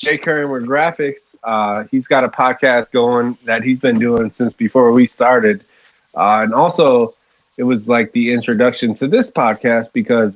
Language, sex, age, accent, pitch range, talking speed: English, male, 20-39, American, 105-125 Hz, 175 wpm